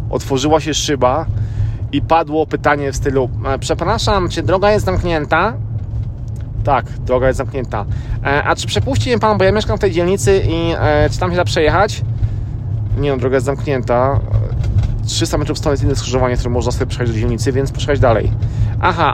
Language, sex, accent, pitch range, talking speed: Polish, male, native, 110-140 Hz, 185 wpm